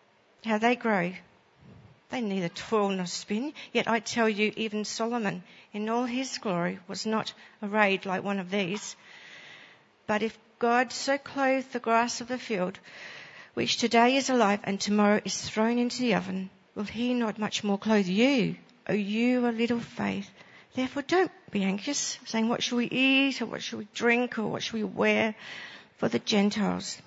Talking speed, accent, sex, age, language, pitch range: 180 wpm, British, female, 60-79, English, 205-240 Hz